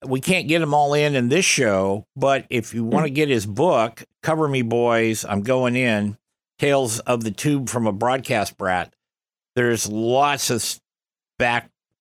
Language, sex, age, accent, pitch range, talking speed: English, male, 50-69, American, 105-135 Hz, 175 wpm